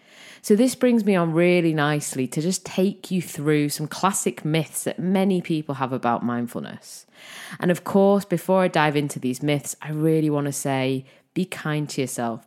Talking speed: 190 wpm